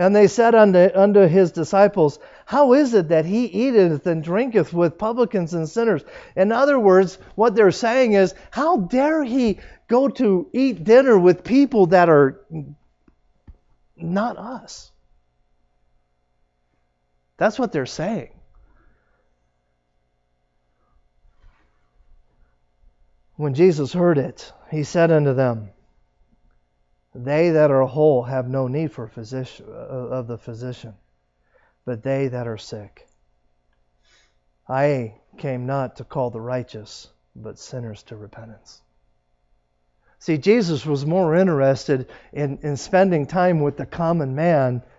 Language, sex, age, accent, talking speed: English, male, 50-69, American, 120 wpm